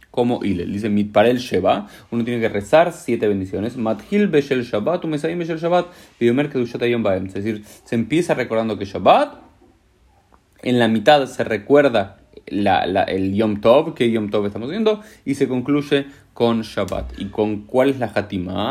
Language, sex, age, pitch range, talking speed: Spanish, male, 30-49, 105-140 Hz, 140 wpm